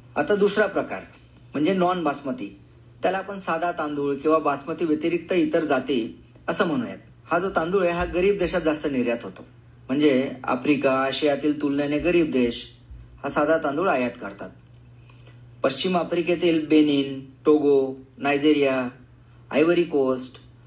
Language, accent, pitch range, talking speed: Marathi, native, 125-170 Hz, 115 wpm